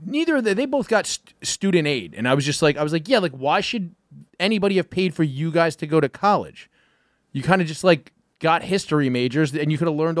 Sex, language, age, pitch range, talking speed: male, English, 30-49, 155-215 Hz, 260 wpm